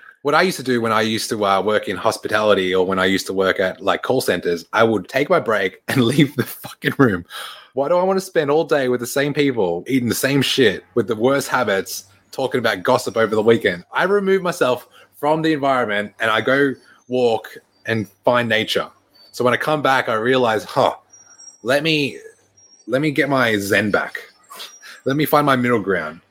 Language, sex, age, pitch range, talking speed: English, male, 20-39, 110-145 Hz, 215 wpm